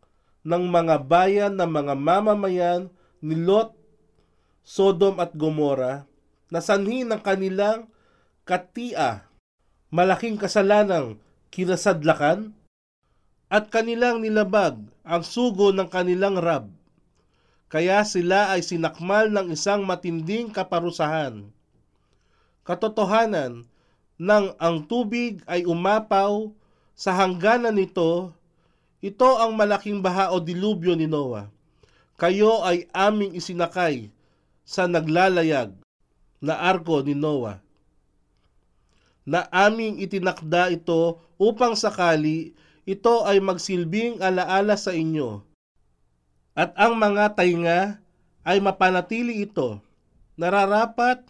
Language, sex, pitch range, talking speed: Filipino, male, 155-205 Hz, 95 wpm